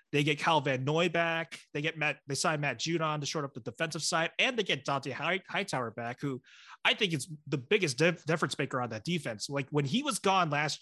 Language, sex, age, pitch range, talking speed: English, male, 30-49, 140-180 Hz, 235 wpm